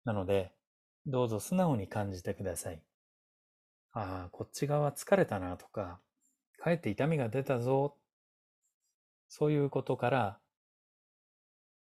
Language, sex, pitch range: Japanese, male, 105-150 Hz